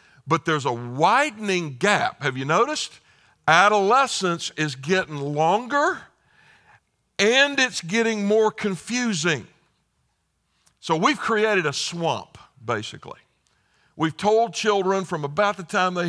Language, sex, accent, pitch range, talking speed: English, male, American, 155-195 Hz, 115 wpm